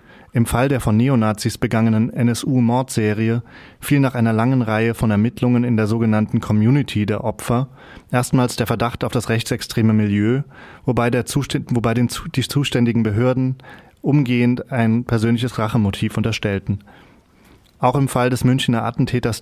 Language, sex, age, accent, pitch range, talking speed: German, male, 20-39, German, 110-125 Hz, 140 wpm